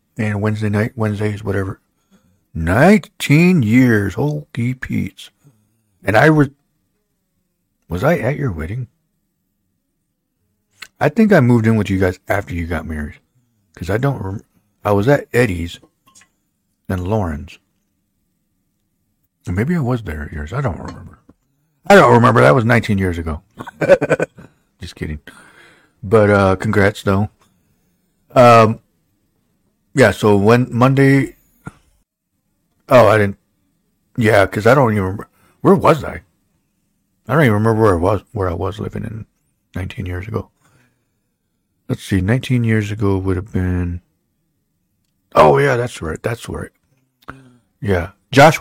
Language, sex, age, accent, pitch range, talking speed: English, male, 60-79, American, 95-125 Hz, 140 wpm